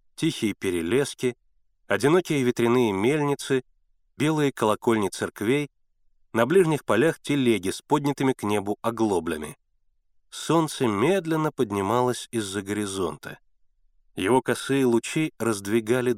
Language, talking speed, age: Russian, 95 wpm, 30-49